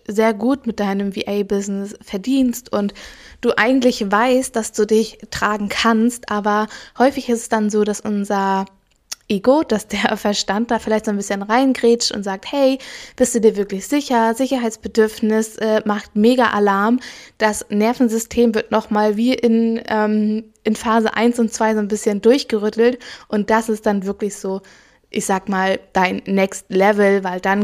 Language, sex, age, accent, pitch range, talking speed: German, female, 20-39, German, 205-230 Hz, 165 wpm